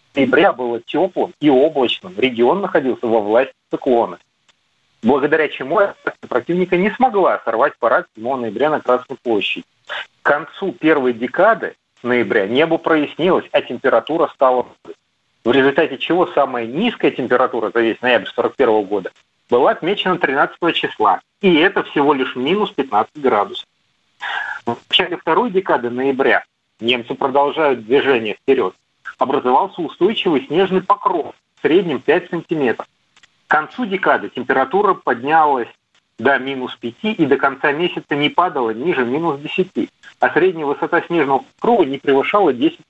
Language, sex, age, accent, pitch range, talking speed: Russian, male, 40-59, native, 135-195 Hz, 135 wpm